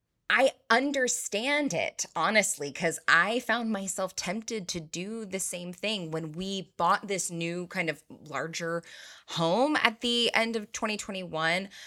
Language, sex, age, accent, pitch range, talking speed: English, female, 20-39, American, 165-225 Hz, 140 wpm